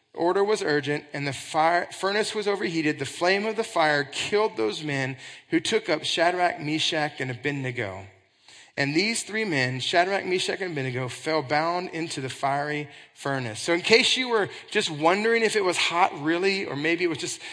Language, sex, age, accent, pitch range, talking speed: English, male, 30-49, American, 140-185 Hz, 190 wpm